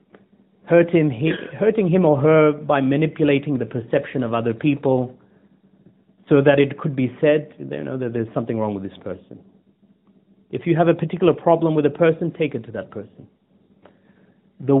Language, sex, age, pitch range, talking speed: English, male, 30-49, 125-195 Hz, 160 wpm